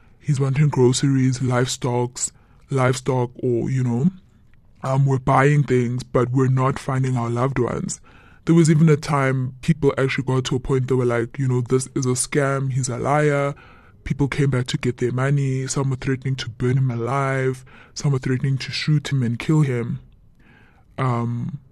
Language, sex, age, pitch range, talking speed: English, female, 20-39, 125-145 Hz, 180 wpm